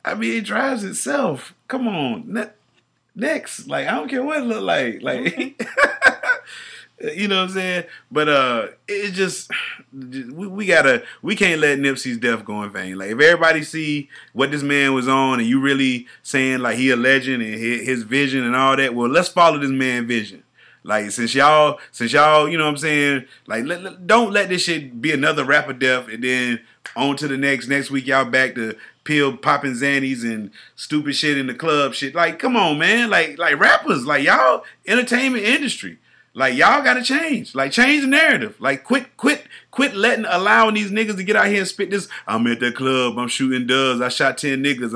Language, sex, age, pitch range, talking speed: English, male, 30-49, 130-215 Hz, 210 wpm